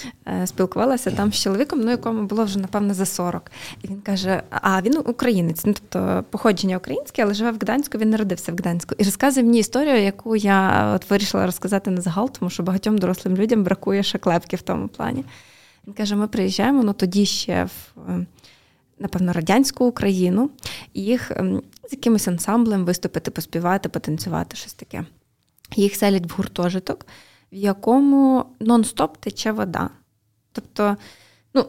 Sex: female